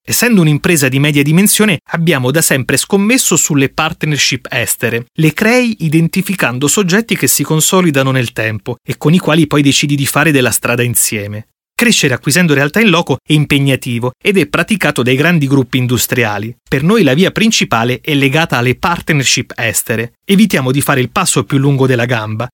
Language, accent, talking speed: Italian, native, 175 wpm